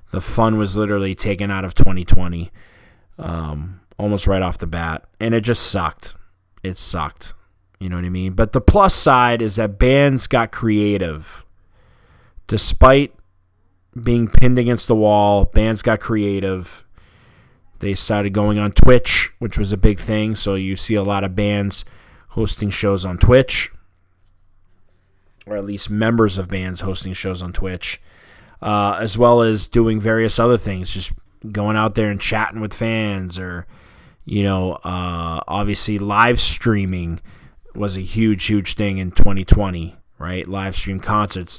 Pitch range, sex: 95-110 Hz, male